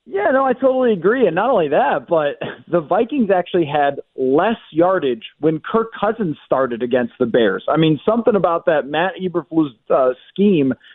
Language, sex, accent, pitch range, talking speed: English, male, American, 155-195 Hz, 175 wpm